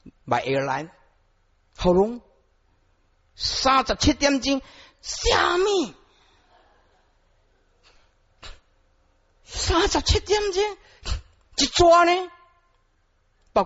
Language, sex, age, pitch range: Chinese, male, 50-69, 100-165 Hz